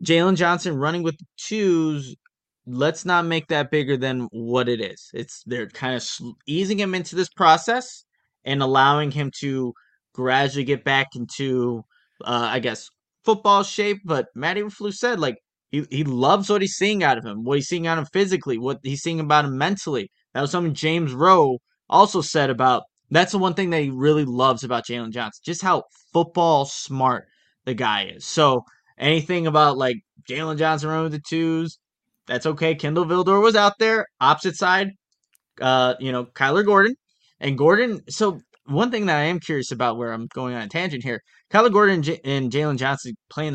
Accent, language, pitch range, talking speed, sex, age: American, English, 130-175 Hz, 190 wpm, male, 20-39